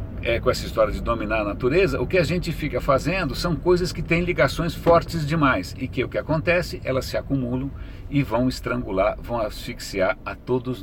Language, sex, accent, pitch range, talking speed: Portuguese, male, Brazilian, 100-140 Hz, 195 wpm